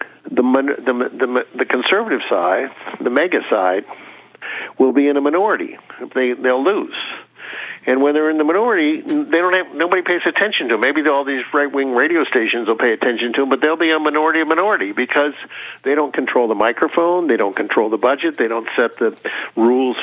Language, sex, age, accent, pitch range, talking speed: English, male, 60-79, American, 125-155 Hz, 200 wpm